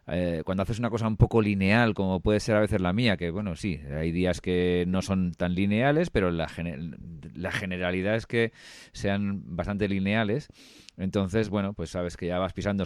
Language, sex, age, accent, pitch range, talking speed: Spanish, male, 40-59, Spanish, 95-120 Hz, 195 wpm